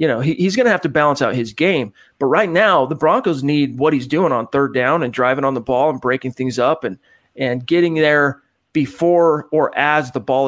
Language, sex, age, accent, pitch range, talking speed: English, male, 40-59, American, 135-155 Hz, 240 wpm